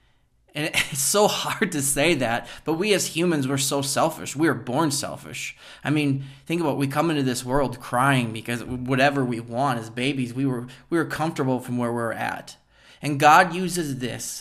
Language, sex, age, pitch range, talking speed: English, male, 20-39, 120-145 Hz, 205 wpm